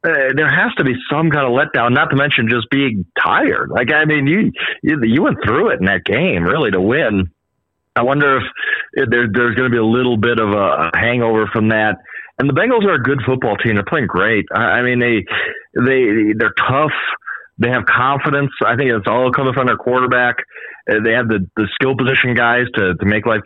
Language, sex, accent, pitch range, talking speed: English, male, American, 110-135 Hz, 225 wpm